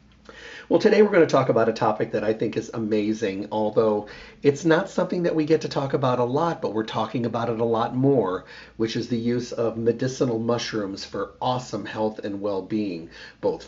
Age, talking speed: 40-59, 205 wpm